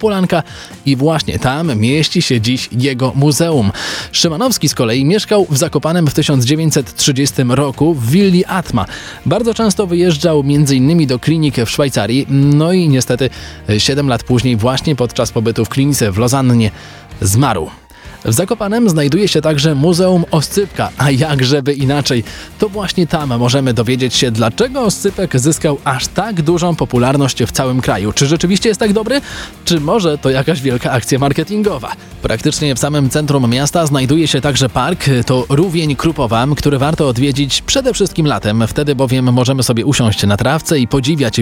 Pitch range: 130-170 Hz